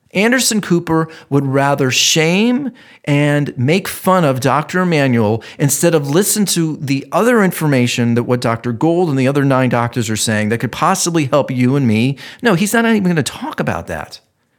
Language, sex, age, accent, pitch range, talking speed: English, male, 40-59, American, 120-170 Hz, 185 wpm